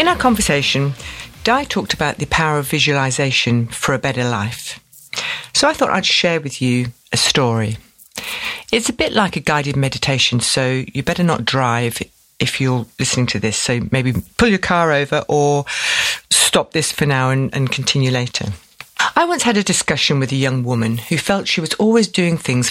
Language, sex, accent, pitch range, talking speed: English, female, British, 125-185 Hz, 190 wpm